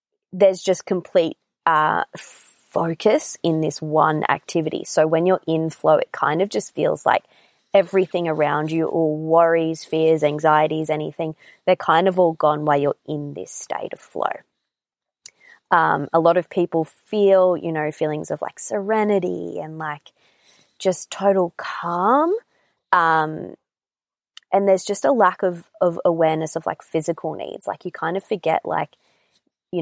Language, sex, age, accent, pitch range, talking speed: English, female, 20-39, Australian, 155-185 Hz, 155 wpm